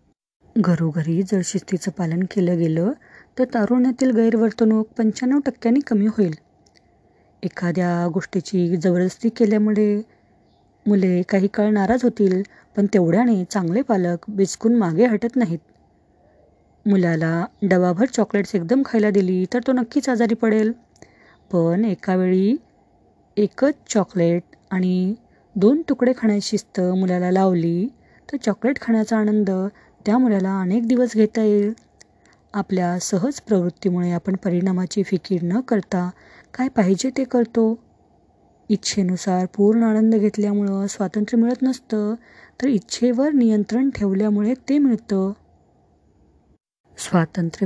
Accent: native